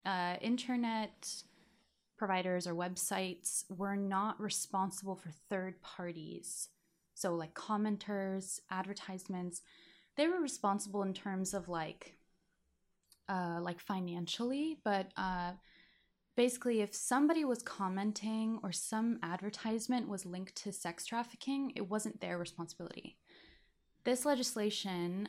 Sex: female